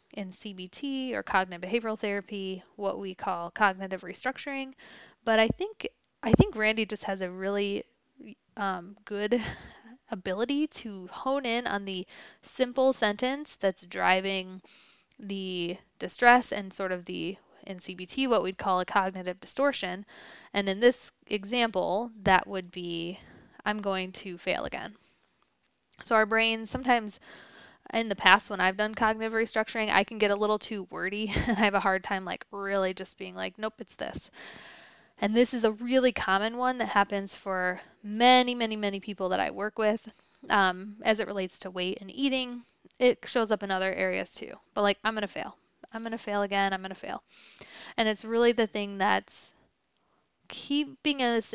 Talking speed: 170 wpm